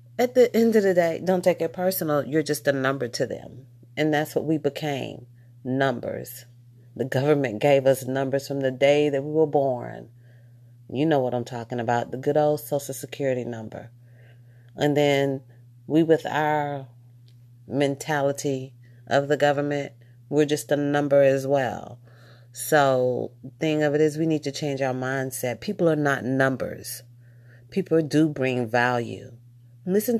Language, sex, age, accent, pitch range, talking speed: English, female, 40-59, American, 120-145 Hz, 165 wpm